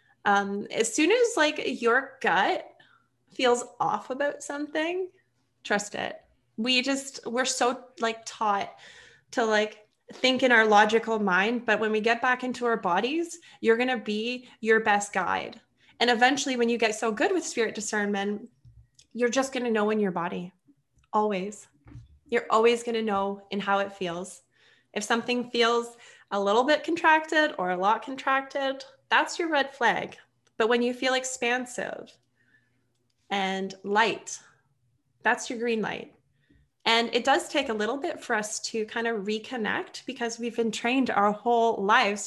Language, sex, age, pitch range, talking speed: English, female, 20-39, 210-255 Hz, 165 wpm